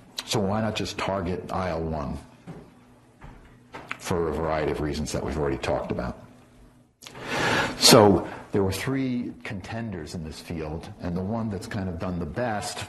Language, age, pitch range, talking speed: English, 60-79, 85-100 Hz, 155 wpm